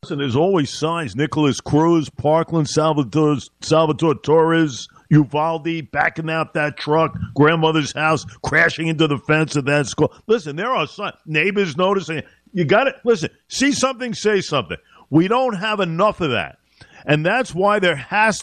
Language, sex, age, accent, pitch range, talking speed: English, male, 50-69, American, 145-185 Hz, 160 wpm